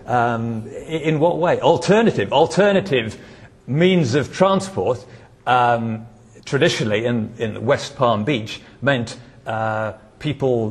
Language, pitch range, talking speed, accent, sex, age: English, 115-150 Hz, 105 wpm, British, male, 50-69